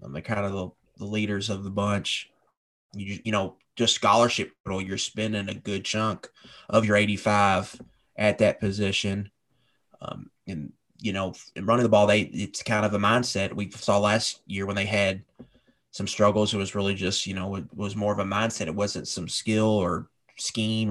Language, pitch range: English, 100-110 Hz